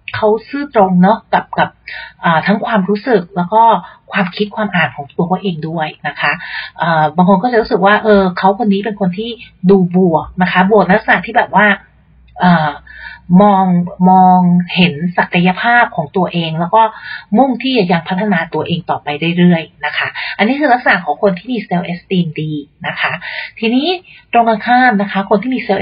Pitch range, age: 170-210 Hz, 30-49